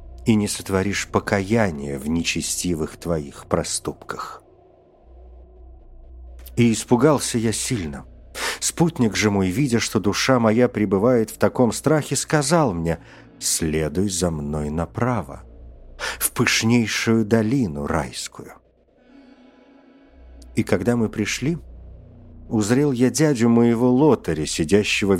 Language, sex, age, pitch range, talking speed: Russian, male, 50-69, 85-125 Hz, 105 wpm